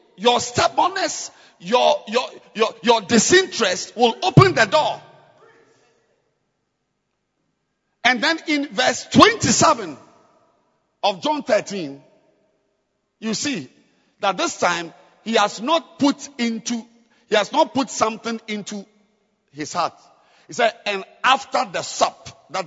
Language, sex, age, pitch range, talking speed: English, male, 50-69, 205-285 Hz, 115 wpm